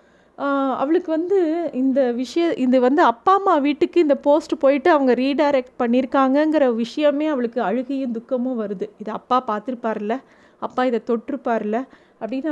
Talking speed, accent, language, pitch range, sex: 135 wpm, native, Tamil, 220-265 Hz, female